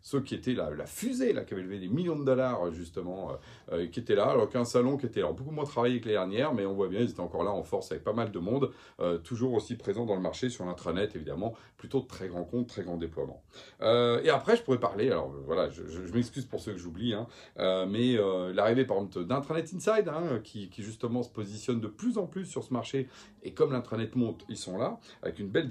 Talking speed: 260 wpm